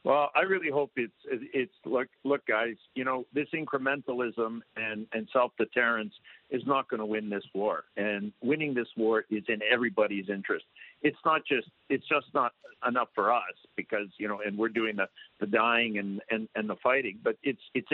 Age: 50-69